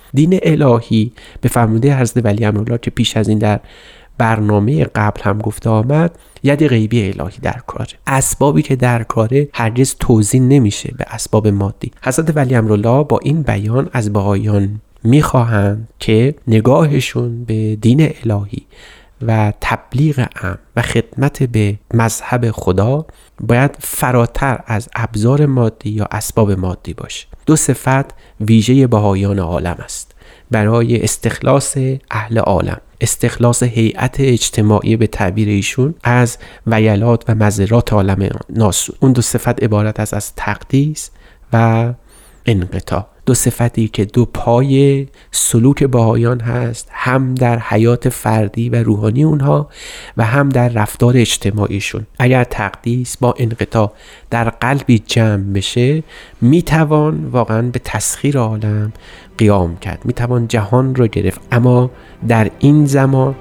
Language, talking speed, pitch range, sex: Persian, 130 wpm, 105-130 Hz, male